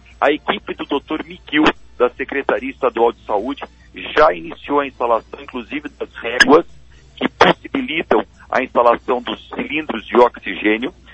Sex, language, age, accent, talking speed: male, Portuguese, 50-69, Brazilian, 135 wpm